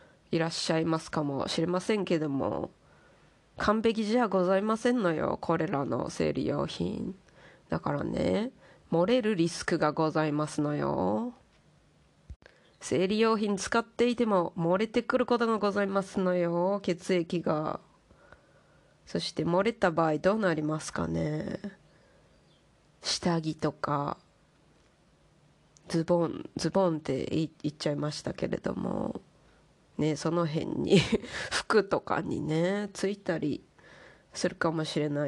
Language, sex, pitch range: Japanese, female, 155-200 Hz